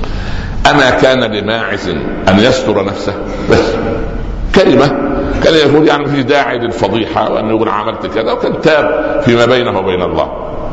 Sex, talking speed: male, 135 wpm